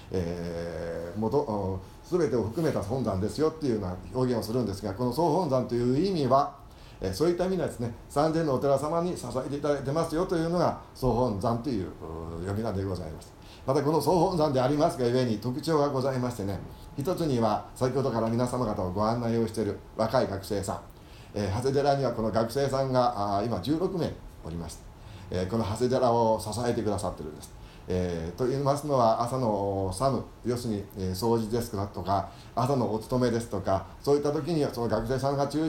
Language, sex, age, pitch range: Japanese, male, 40-59, 105-140 Hz